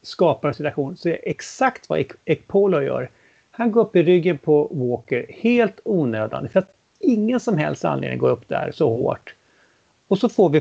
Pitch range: 145-210 Hz